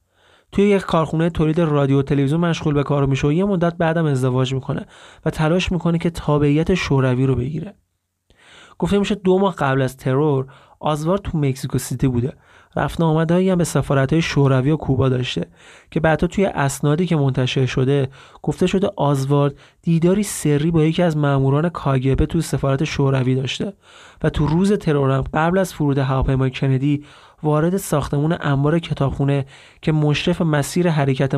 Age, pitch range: 30-49, 135-165 Hz